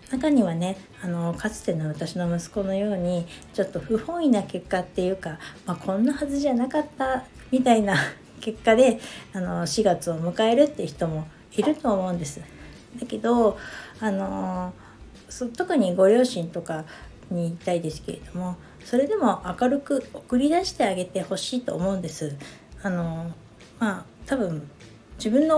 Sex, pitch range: female, 170-235 Hz